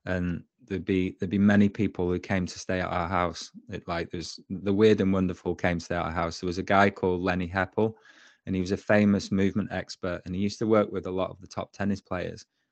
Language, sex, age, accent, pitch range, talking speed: English, male, 20-39, British, 90-105 Hz, 255 wpm